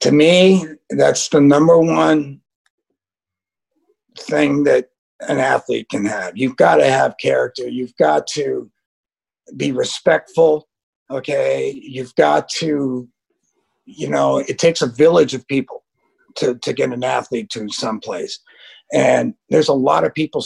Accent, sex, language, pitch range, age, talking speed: American, male, English, 130-195 Hz, 50-69, 140 wpm